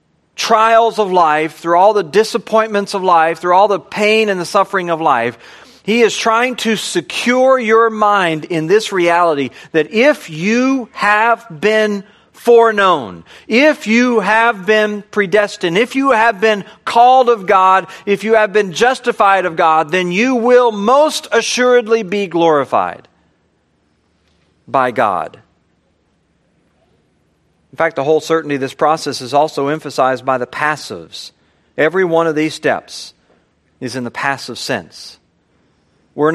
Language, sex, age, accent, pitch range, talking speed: English, male, 40-59, American, 145-215 Hz, 145 wpm